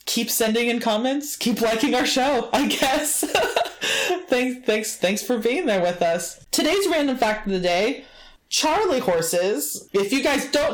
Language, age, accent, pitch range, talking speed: English, 20-39, American, 175-230 Hz, 170 wpm